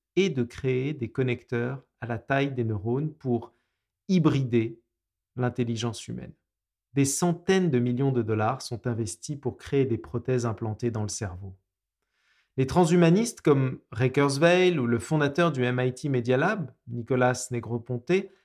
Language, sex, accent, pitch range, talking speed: French, male, French, 115-145 Hz, 145 wpm